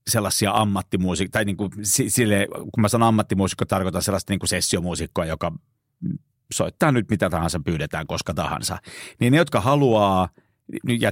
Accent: native